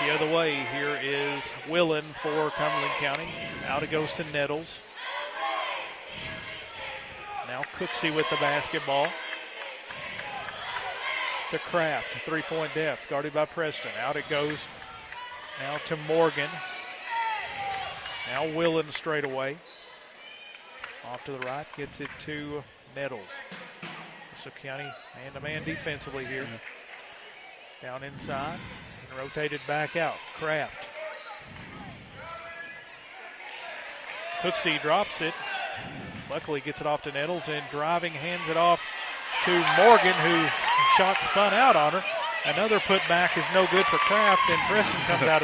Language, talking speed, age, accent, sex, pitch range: English, 120 wpm, 40-59, American, male, 145-180 Hz